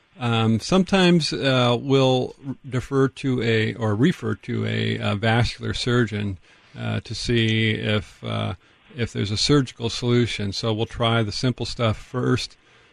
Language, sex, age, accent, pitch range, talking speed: English, male, 50-69, American, 110-125 Hz, 145 wpm